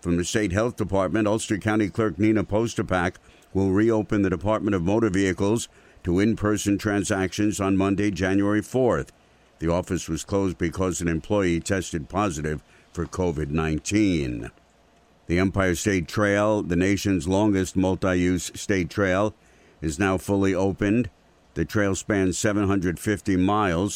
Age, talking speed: 60-79, 135 wpm